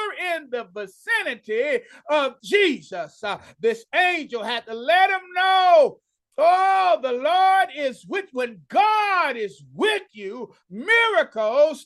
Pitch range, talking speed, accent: 265-385 Hz, 120 wpm, American